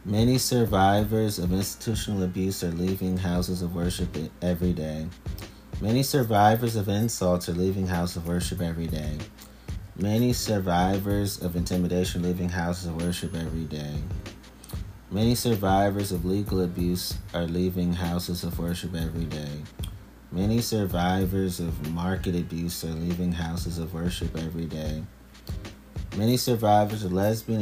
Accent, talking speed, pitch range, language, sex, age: American, 135 wpm, 85-105 Hz, English, male, 30-49